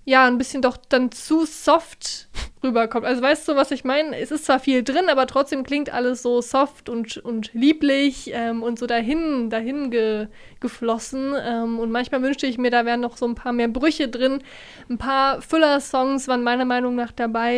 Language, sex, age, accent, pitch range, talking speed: German, female, 20-39, German, 230-270 Hz, 200 wpm